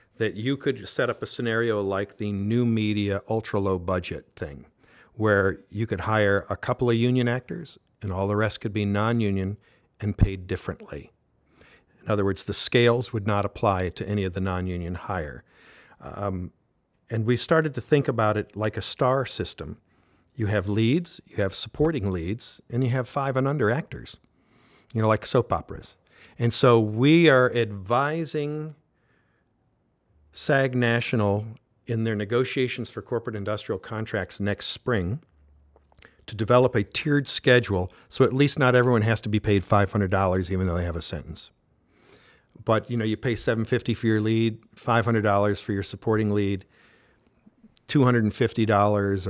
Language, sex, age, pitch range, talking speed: English, male, 50-69, 100-125 Hz, 160 wpm